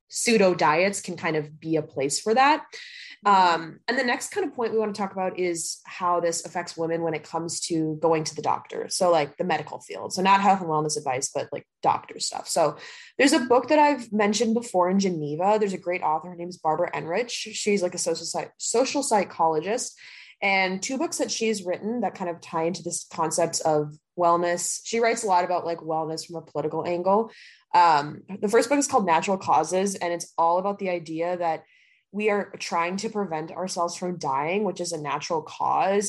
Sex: female